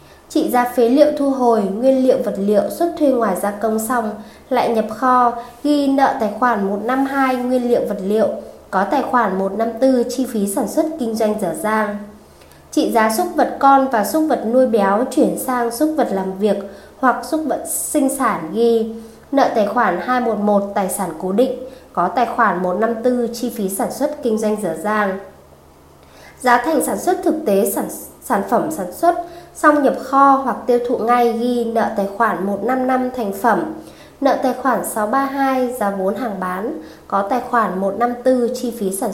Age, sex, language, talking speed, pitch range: 20-39, female, Vietnamese, 185 wpm, 205-260 Hz